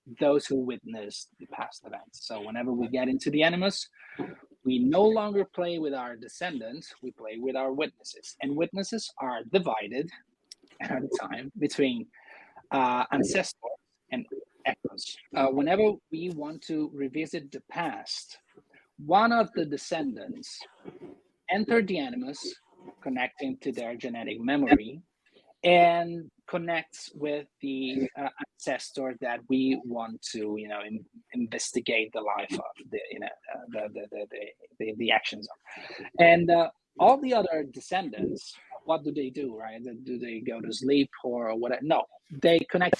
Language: English